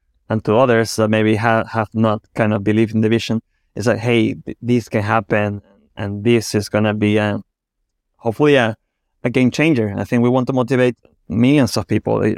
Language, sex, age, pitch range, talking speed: English, male, 30-49, 110-125 Hz, 205 wpm